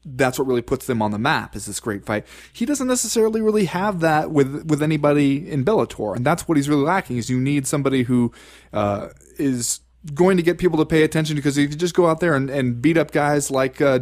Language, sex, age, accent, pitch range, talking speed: English, male, 20-39, American, 130-185 Hz, 245 wpm